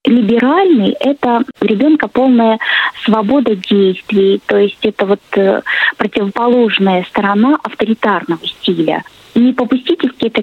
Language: Russian